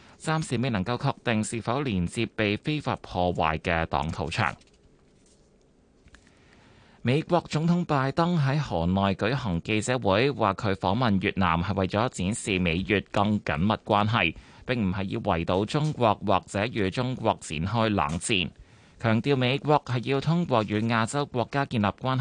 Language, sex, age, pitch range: Chinese, male, 20-39, 95-125 Hz